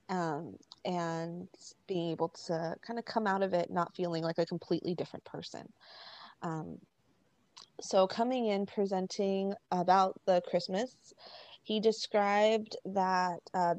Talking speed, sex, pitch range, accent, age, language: 130 wpm, female, 175-230 Hz, American, 20-39, English